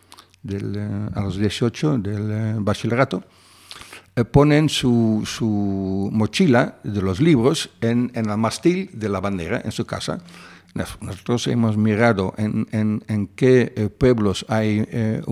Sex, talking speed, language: male, 150 wpm, Spanish